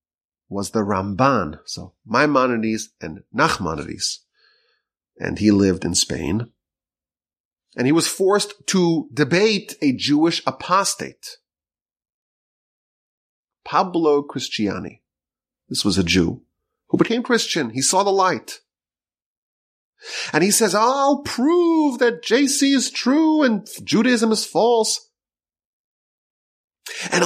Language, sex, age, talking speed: English, male, 30-49, 105 wpm